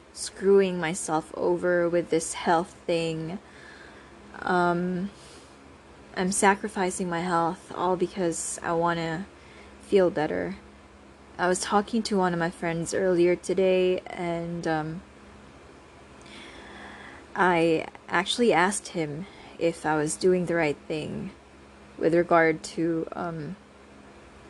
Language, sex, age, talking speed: English, female, 20-39, 115 wpm